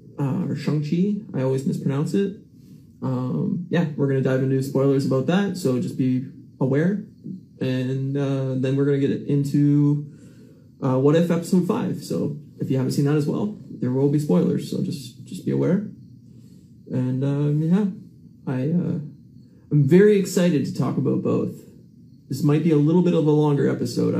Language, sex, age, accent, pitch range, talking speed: English, male, 20-39, American, 135-175 Hz, 185 wpm